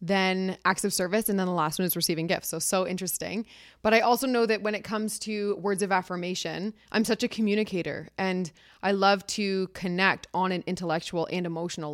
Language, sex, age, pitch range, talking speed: English, female, 20-39, 175-215 Hz, 205 wpm